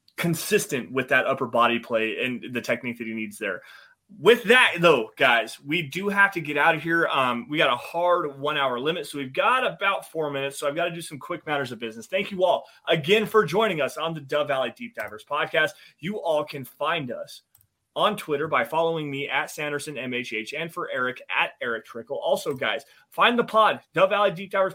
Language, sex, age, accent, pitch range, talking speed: English, male, 30-49, American, 135-170 Hz, 220 wpm